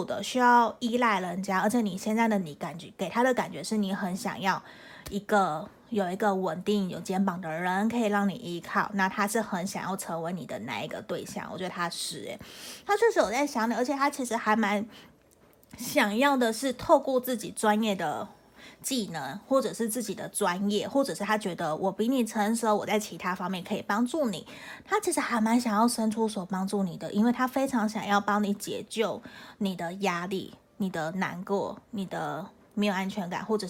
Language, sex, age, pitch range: Chinese, female, 30-49, 190-235 Hz